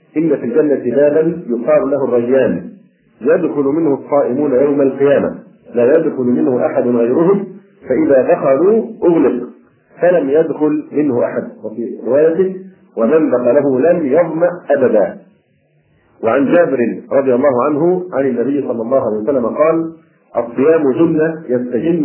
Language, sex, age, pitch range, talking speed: Arabic, male, 40-59, 125-170 Hz, 130 wpm